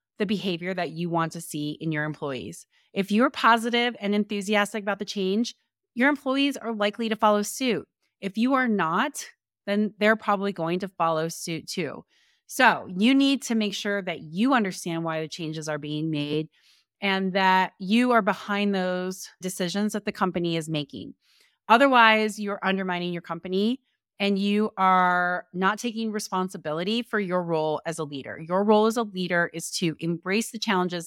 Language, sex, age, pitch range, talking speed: English, female, 30-49, 180-220 Hz, 175 wpm